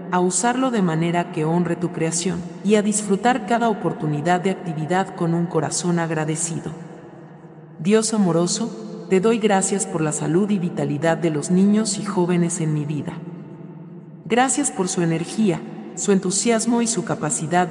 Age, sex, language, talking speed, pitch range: 40-59, male, English, 155 wpm, 165-195 Hz